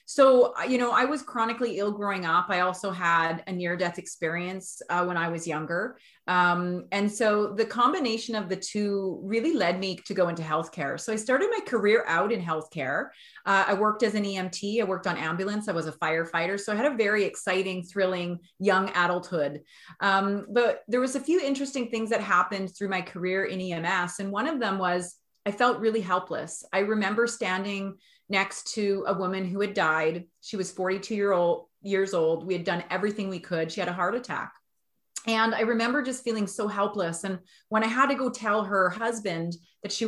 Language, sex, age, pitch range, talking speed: English, female, 30-49, 180-220 Hz, 200 wpm